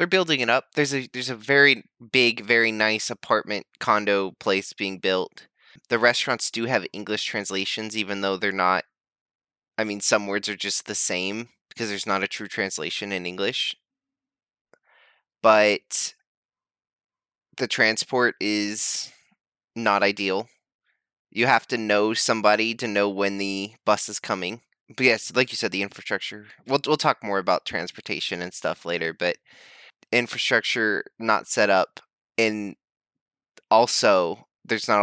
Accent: American